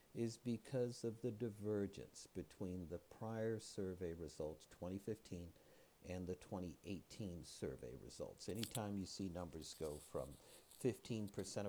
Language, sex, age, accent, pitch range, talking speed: English, male, 60-79, American, 90-115 Hz, 120 wpm